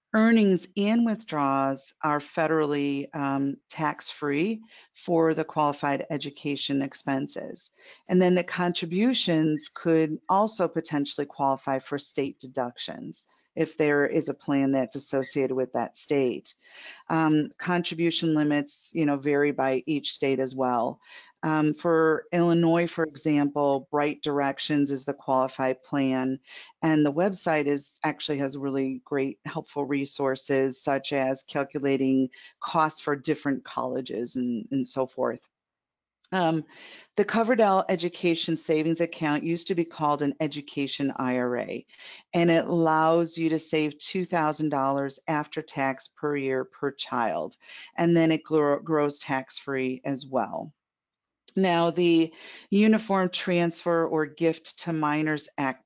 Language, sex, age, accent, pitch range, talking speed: English, female, 40-59, American, 140-165 Hz, 125 wpm